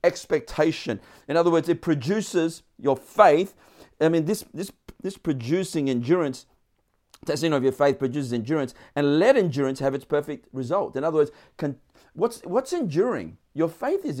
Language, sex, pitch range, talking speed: English, male, 155-215 Hz, 170 wpm